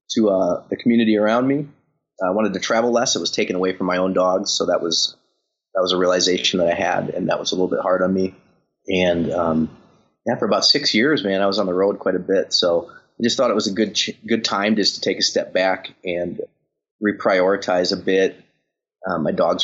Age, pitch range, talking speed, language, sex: 30-49, 85-95 Hz, 240 wpm, English, male